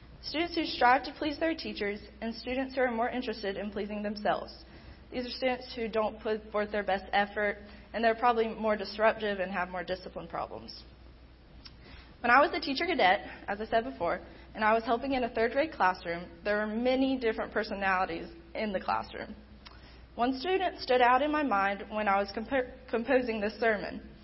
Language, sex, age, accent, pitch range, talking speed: English, female, 20-39, American, 210-270 Hz, 190 wpm